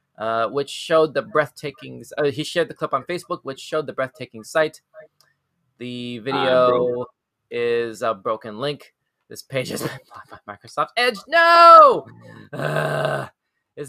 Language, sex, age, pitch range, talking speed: English, male, 20-39, 120-175 Hz, 135 wpm